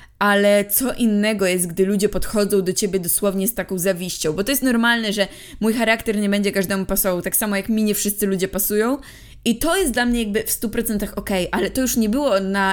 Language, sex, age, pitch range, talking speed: Polish, female, 20-39, 195-245 Hz, 225 wpm